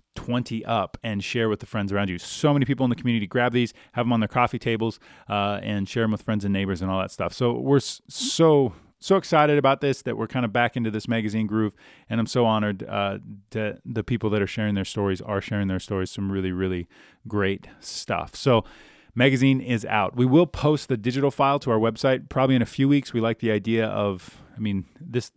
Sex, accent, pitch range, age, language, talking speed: male, American, 100-125 Hz, 30-49, English, 235 wpm